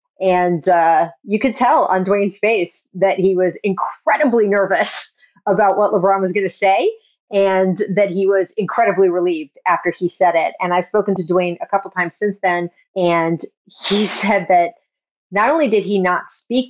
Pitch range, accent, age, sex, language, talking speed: 180-255 Hz, American, 30-49, female, English, 180 wpm